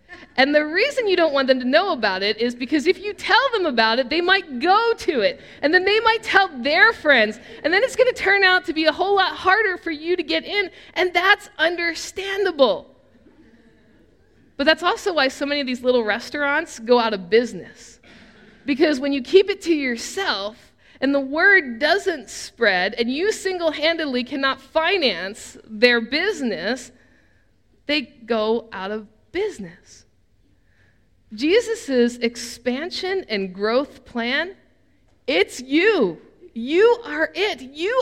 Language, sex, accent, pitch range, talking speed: English, female, American, 260-365 Hz, 160 wpm